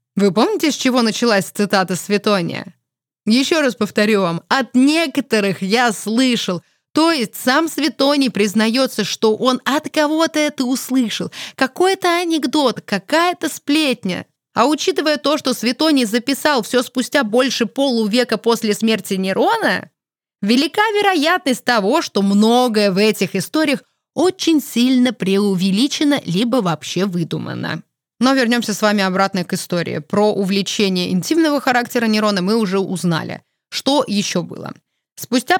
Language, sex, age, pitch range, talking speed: Russian, female, 20-39, 195-275 Hz, 130 wpm